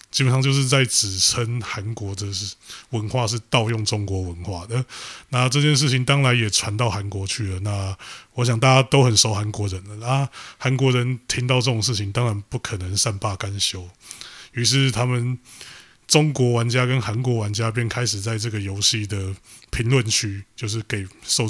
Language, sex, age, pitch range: Chinese, male, 20-39, 105-130 Hz